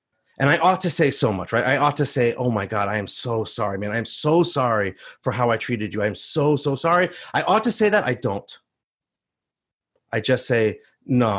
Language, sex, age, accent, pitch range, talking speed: English, male, 30-49, American, 110-145 Hz, 235 wpm